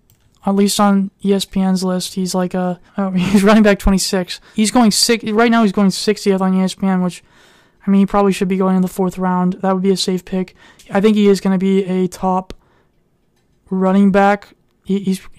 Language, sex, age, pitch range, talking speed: English, male, 20-39, 190-205 Hz, 200 wpm